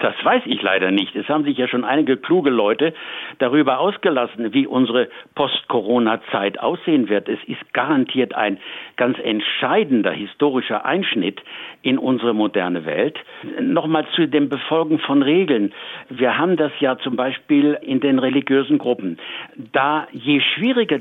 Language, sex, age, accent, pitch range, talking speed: German, male, 60-79, German, 125-160 Hz, 145 wpm